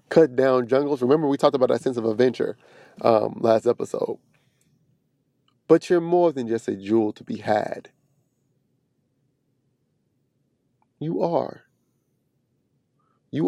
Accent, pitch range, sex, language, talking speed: American, 125-140 Hz, male, English, 120 wpm